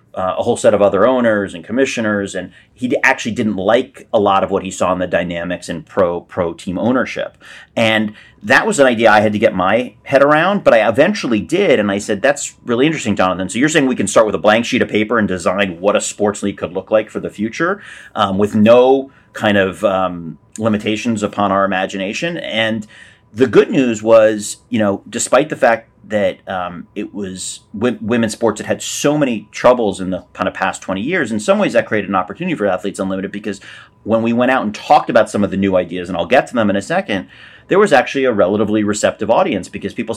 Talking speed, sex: 225 wpm, male